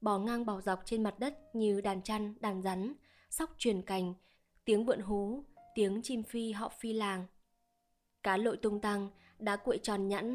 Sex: female